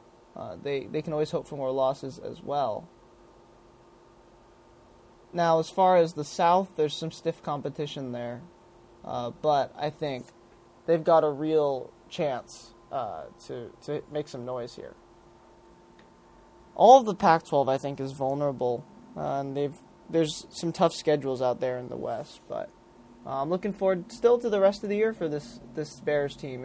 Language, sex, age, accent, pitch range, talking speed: English, male, 20-39, American, 135-170 Hz, 170 wpm